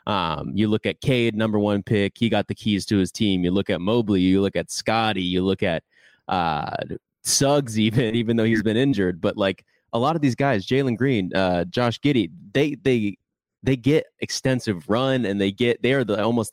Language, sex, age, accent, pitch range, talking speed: English, male, 20-39, American, 95-115 Hz, 215 wpm